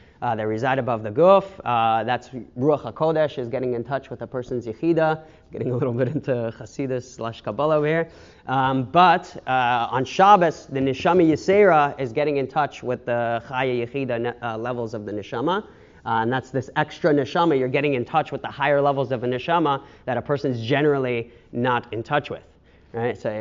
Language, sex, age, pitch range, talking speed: English, male, 30-49, 115-140 Hz, 200 wpm